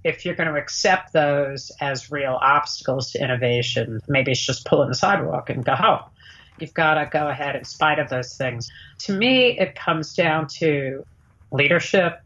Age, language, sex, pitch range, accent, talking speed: 50-69, English, female, 125-155 Hz, American, 175 wpm